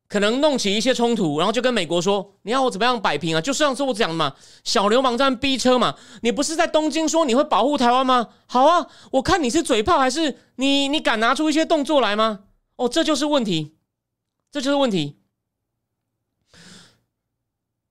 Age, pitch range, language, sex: 30-49, 205-300 Hz, Chinese, male